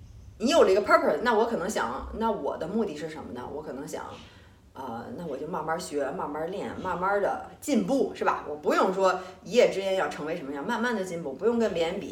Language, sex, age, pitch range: Chinese, female, 30-49, 170-255 Hz